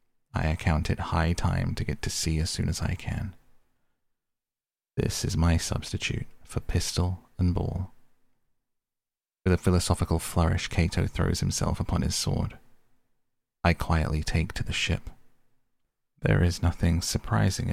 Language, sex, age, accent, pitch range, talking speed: English, male, 30-49, British, 85-110 Hz, 140 wpm